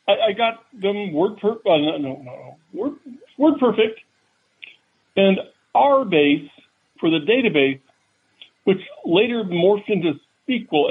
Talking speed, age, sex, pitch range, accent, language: 115 wpm, 60-79, male, 185-270 Hz, American, English